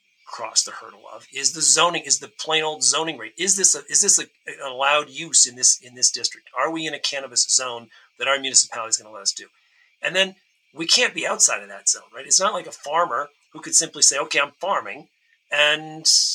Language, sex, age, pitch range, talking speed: English, male, 40-59, 140-175 Hz, 240 wpm